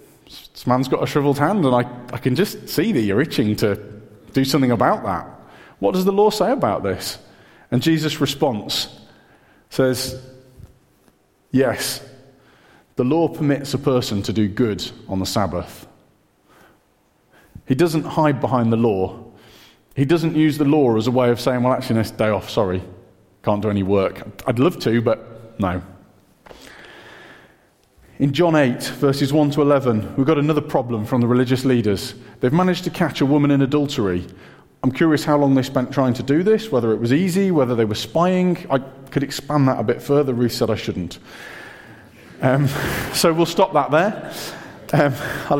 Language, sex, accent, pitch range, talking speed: English, male, British, 110-150 Hz, 180 wpm